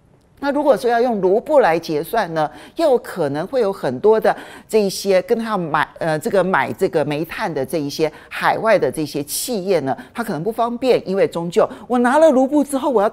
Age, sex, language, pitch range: 40-59, male, Chinese, 155-245 Hz